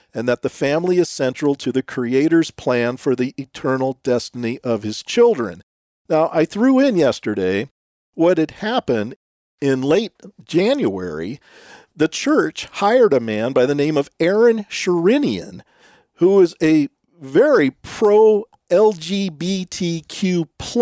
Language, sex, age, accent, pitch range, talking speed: English, male, 50-69, American, 135-210 Hz, 125 wpm